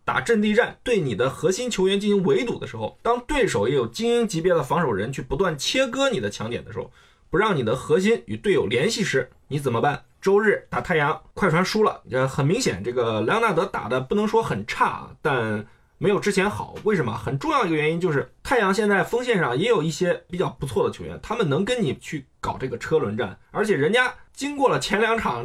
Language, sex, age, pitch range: Chinese, male, 20-39, 140-210 Hz